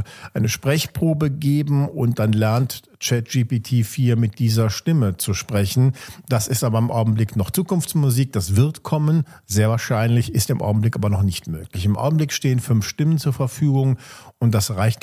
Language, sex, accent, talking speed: German, male, German, 165 wpm